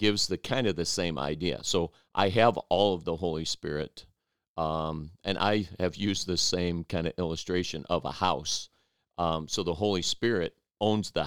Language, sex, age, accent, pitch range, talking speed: English, male, 50-69, American, 80-95 Hz, 185 wpm